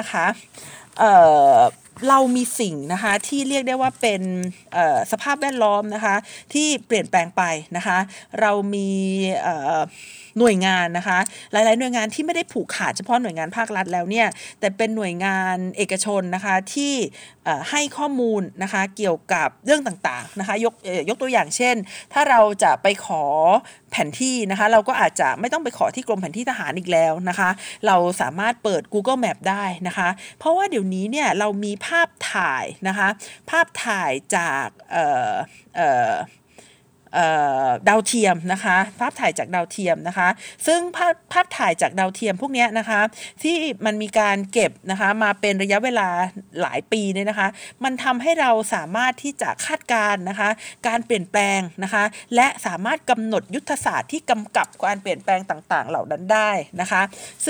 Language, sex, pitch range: Thai, female, 190-250 Hz